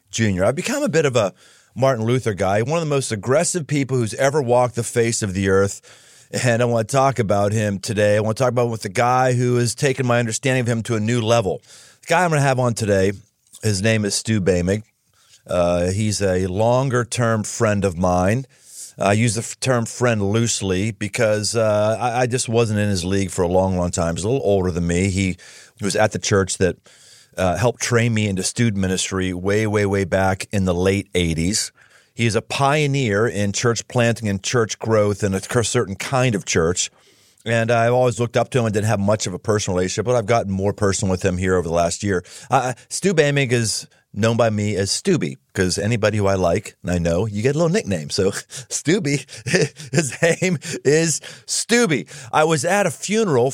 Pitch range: 100-125 Hz